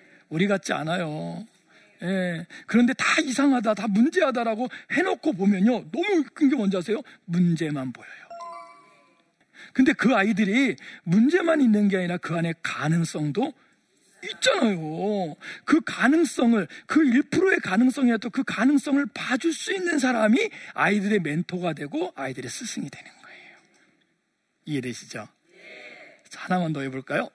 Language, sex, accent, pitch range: Korean, male, native, 165-275 Hz